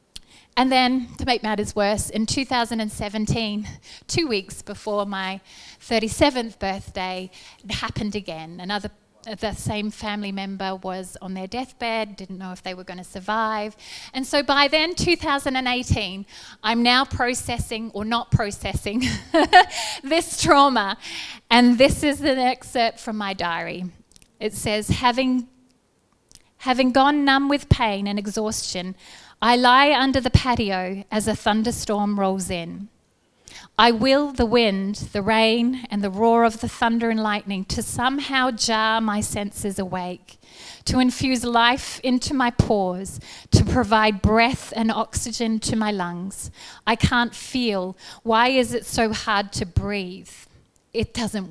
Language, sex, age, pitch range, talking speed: English, female, 30-49, 200-245 Hz, 140 wpm